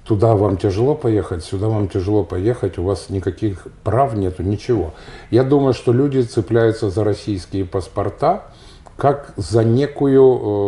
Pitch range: 100-125 Hz